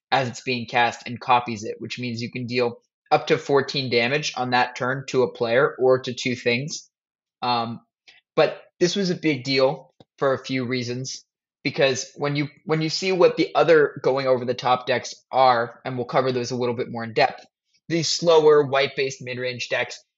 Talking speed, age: 205 wpm, 20-39